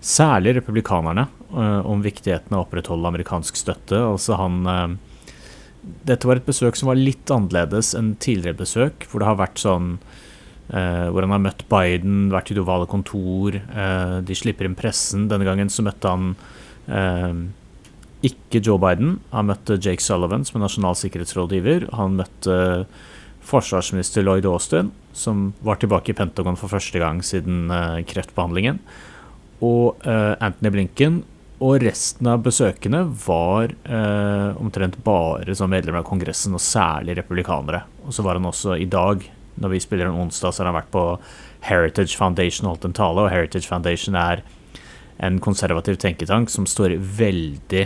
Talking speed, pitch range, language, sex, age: 160 wpm, 90-105 Hz, English, male, 30-49